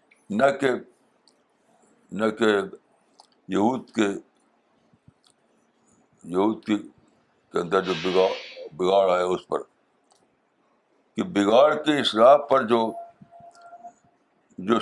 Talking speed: 95 wpm